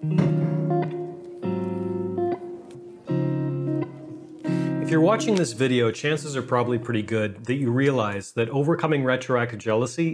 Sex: male